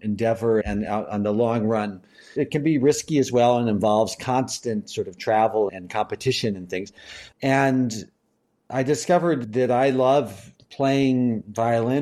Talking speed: 155 wpm